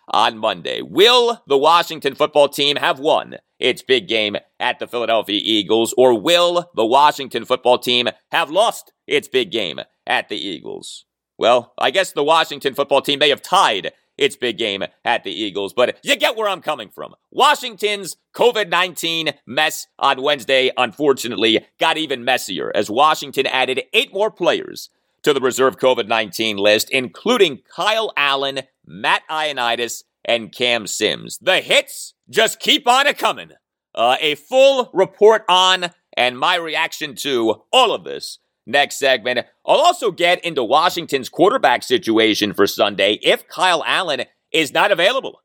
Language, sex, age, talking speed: English, male, 40-59, 155 wpm